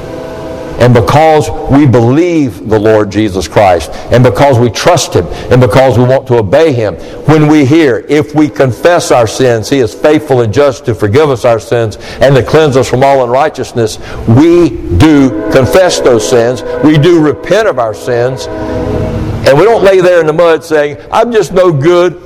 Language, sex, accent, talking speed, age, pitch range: English, male, American, 185 wpm, 60-79, 115-160 Hz